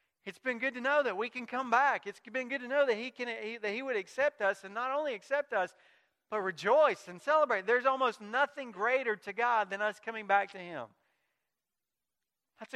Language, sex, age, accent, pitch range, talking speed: English, male, 40-59, American, 165-240 Hz, 200 wpm